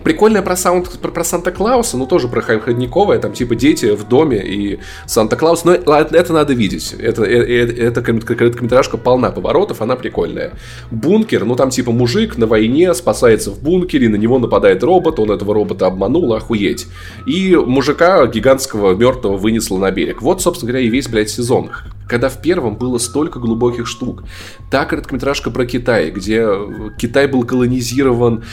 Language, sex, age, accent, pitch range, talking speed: Russian, male, 20-39, native, 110-135 Hz, 160 wpm